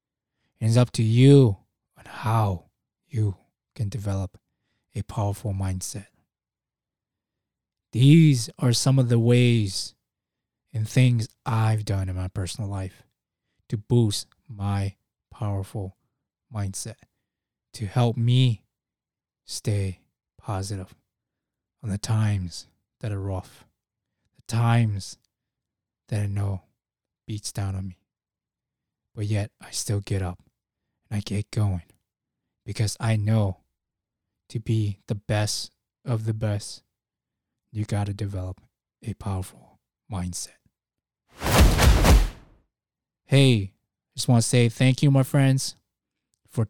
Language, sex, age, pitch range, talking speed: English, male, 20-39, 100-120 Hz, 115 wpm